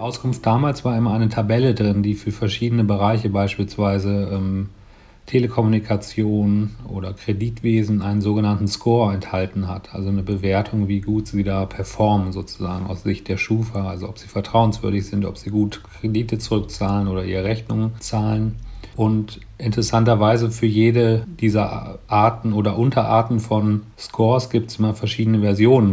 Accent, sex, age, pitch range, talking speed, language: German, male, 40-59, 100-115 Hz, 145 wpm, German